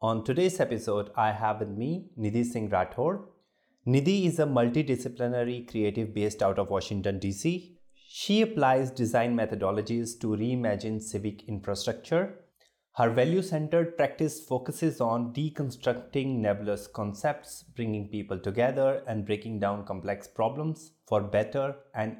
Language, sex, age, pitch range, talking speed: English, male, 30-49, 105-135 Hz, 125 wpm